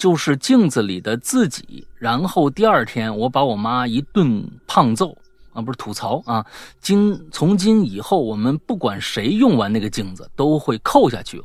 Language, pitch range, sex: Chinese, 100-160 Hz, male